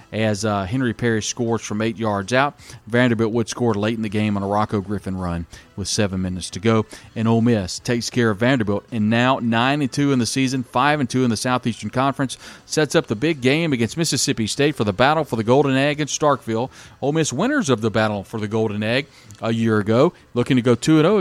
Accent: American